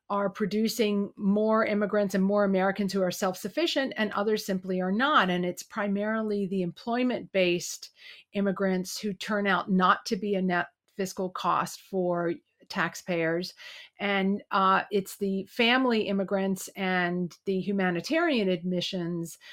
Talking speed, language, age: 130 wpm, English, 50-69